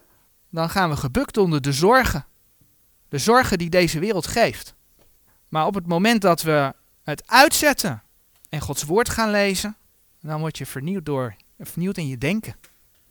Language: Dutch